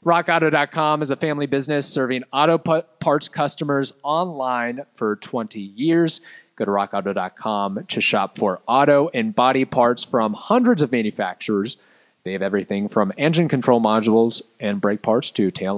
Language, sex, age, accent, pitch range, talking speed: English, male, 30-49, American, 105-145 Hz, 150 wpm